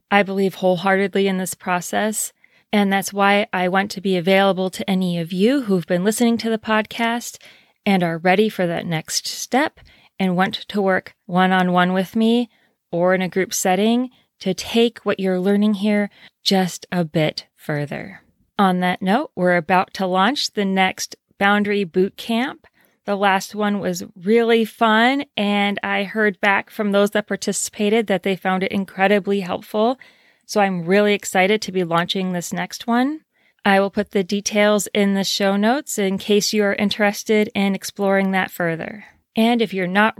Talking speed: 175 wpm